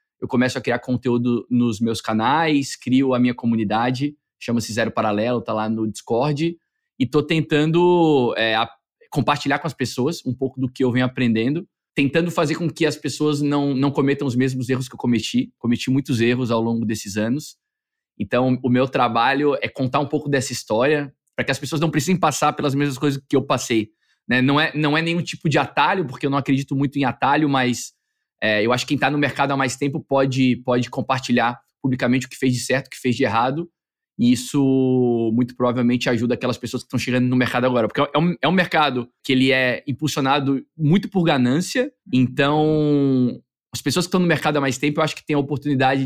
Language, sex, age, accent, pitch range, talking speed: Portuguese, male, 20-39, Brazilian, 125-145 Hz, 210 wpm